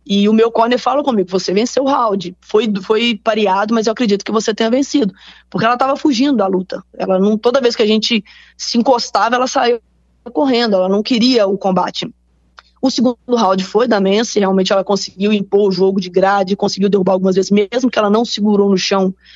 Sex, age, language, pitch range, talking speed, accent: female, 20-39, Portuguese, 195-225 Hz, 210 wpm, Brazilian